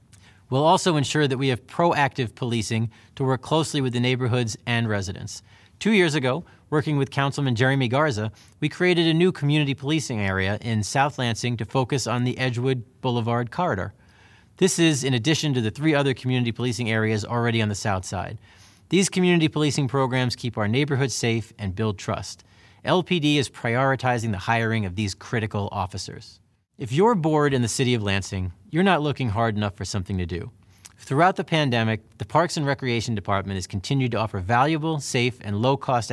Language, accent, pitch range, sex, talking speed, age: English, American, 105-140 Hz, male, 185 wpm, 30-49